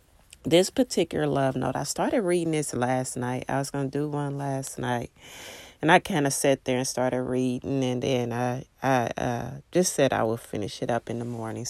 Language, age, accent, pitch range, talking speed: English, 30-49, American, 125-150 Hz, 210 wpm